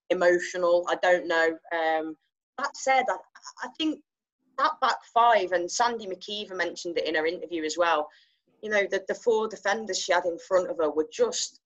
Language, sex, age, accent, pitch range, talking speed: English, female, 20-39, British, 165-205 Hz, 190 wpm